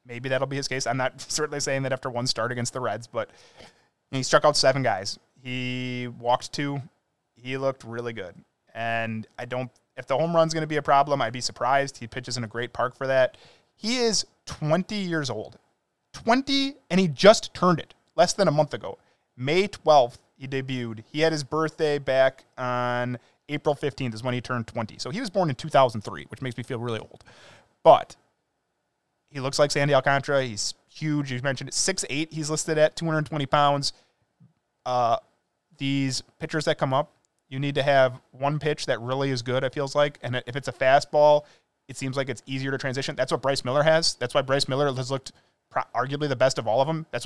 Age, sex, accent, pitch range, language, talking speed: 20-39, male, American, 125-155 Hz, English, 210 wpm